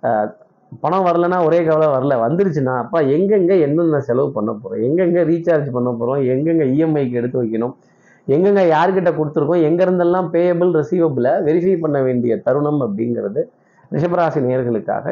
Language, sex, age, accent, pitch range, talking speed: Tamil, male, 30-49, native, 130-180 Hz, 130 wpm